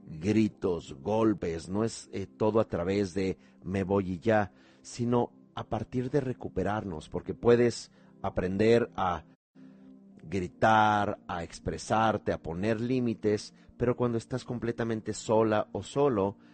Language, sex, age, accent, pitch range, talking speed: Spanish, male, 40-59, Mexican, 85-110 Hz, 125 wpm